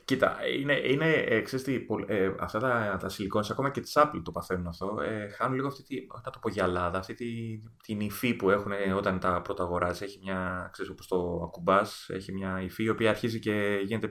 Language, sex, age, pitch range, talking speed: Greek, male, 20-39, 90-110 Hz, 210 wpm